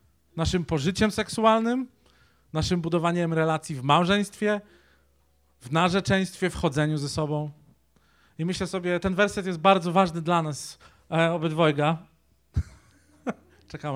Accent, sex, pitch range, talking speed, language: native, male, 145-185 Hz, 115 wpm, Polish